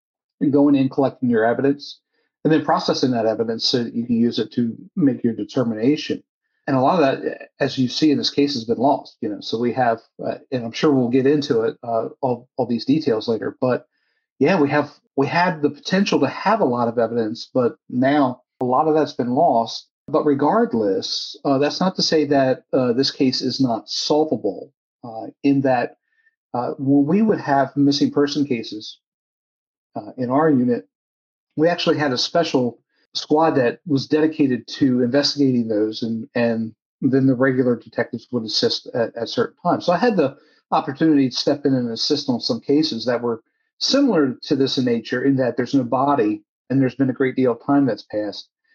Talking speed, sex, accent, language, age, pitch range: 200 wpm, male, American, English, 50-69, 120-150 Hz